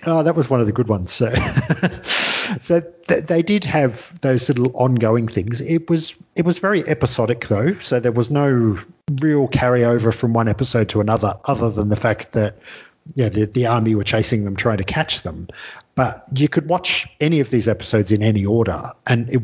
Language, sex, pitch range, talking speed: English, male, 110-130 Hz, 200 wpm